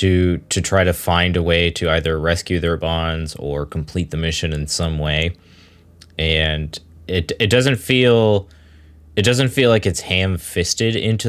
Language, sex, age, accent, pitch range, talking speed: English, male, 20-39, American, 80-100 Hz, 170 wpm